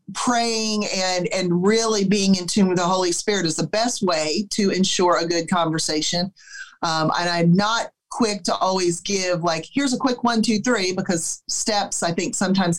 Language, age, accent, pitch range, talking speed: English, 40-59, American, 180-245 Hz, 190 wpm